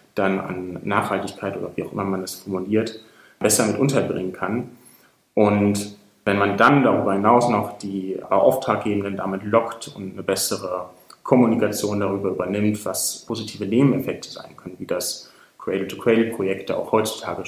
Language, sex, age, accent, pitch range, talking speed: German, male, 30-49, German, 100-120 Hz, 140 wpm